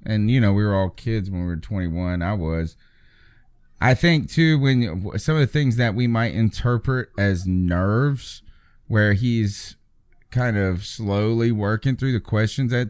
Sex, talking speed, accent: male, 175 wpm, American